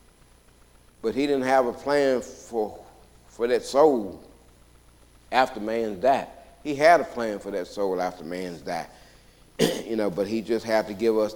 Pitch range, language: 100-140 Hz, English